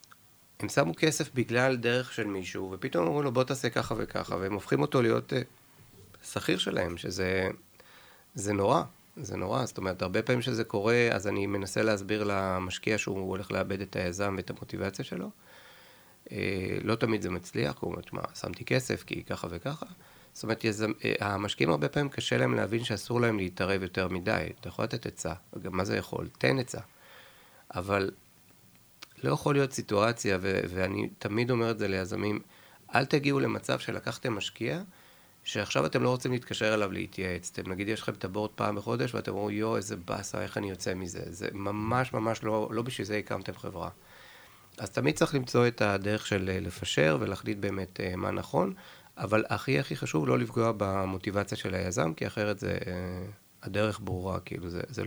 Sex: male